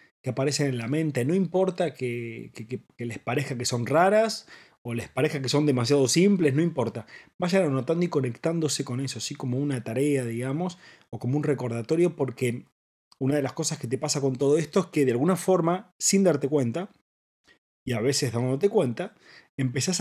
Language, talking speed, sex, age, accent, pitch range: Spanish, 190 wpm, male, 30-49, Argentinian, 120-155 Hz